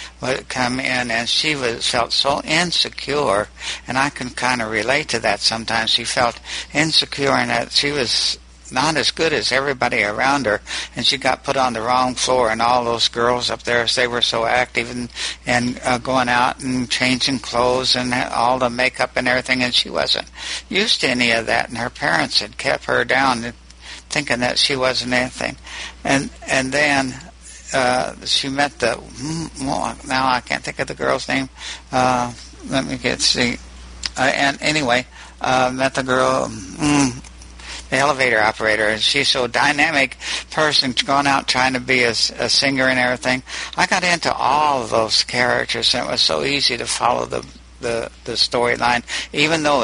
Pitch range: 115-130 Hz